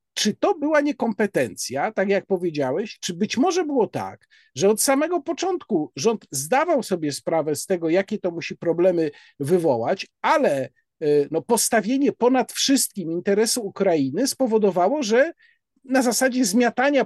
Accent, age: native, 50-69